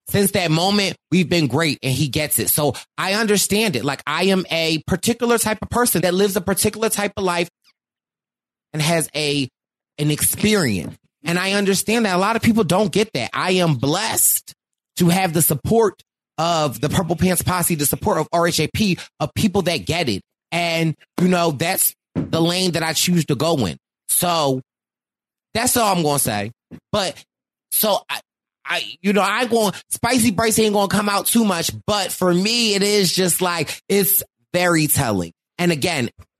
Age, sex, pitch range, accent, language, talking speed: 30-49, male, 155-205 Hz, American, English, 190 wpm